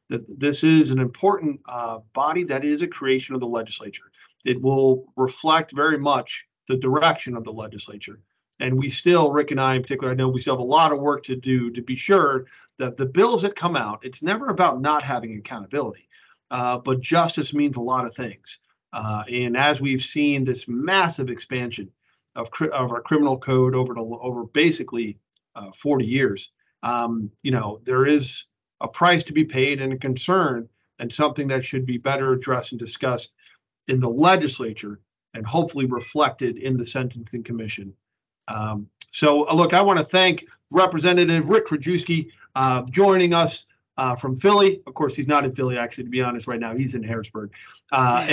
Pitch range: 120-155 Hz